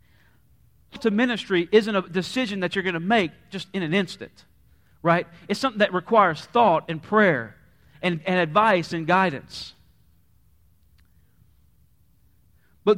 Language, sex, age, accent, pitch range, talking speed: English, male, 40-59, American, 160-220 Hz, 130 wpm